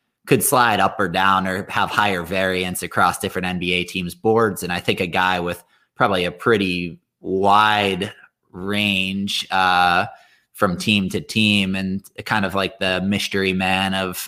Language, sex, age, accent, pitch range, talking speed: English, male, 20-39, American, 90-105 Hz, 160 wpm